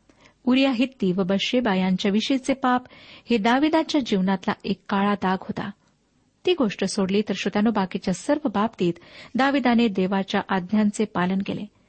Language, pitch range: Marathi, 195-255 Hz